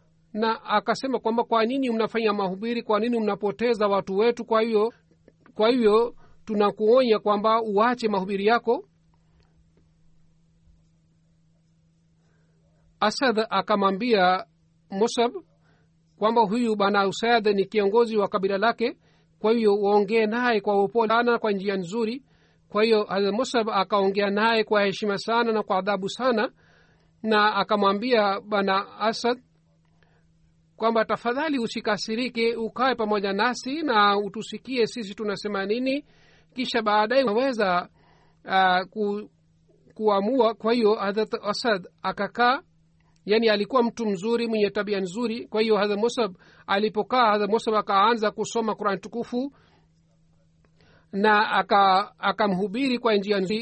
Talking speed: 115 wpm